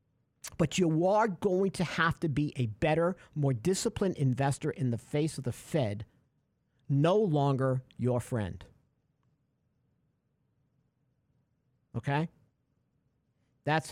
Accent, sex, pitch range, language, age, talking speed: American, male, 125-155 Hz, English, 50-69, 110 wpm